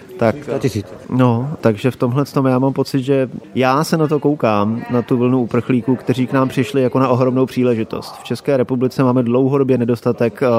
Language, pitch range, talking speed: Slovak, 115-130 Hz, 175 wpm